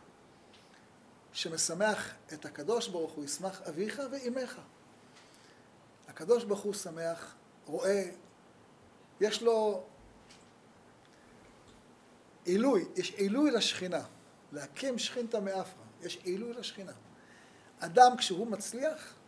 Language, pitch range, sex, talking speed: Hebrew, 150-225 Hz, male, 85 wpm